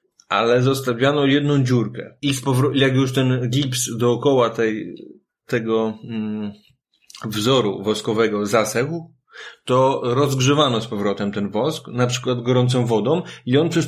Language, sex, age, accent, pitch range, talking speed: Polish, male, 30-49, native, 125-150 Hz, 125 wpm